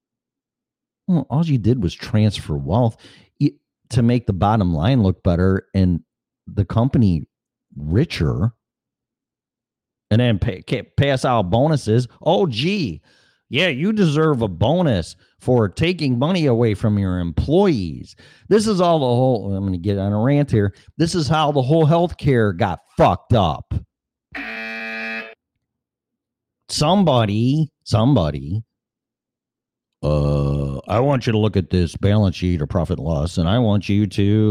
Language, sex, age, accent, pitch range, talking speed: English, male, 40-59, American, 90-130 Hz, 140 wpm